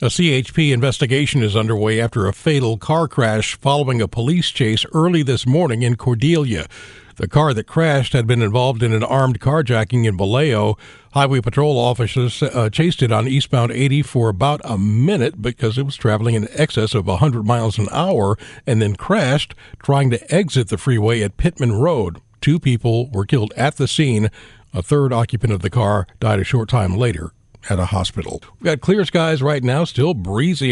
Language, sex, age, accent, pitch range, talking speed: English, male, 50-69, American, 110-145 Hz, 185 wpm